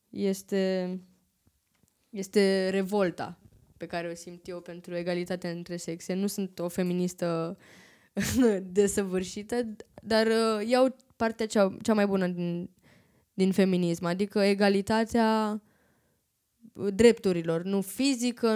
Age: 20-39